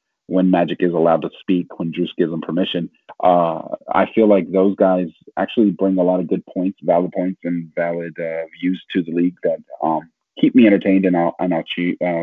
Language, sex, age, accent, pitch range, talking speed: English, male, 30-49, American, 85-95 Hz, 210 wpm